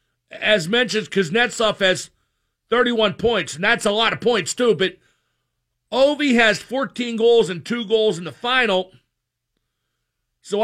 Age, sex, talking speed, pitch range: 50-69, male, 140 wpm, 165-225 Hz